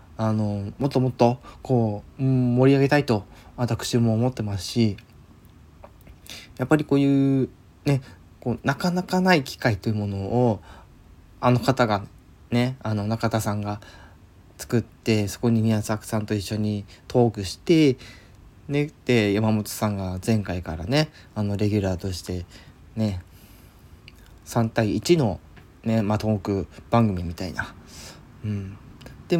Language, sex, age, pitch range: Japanese, male, 20-39, 100-125 Hz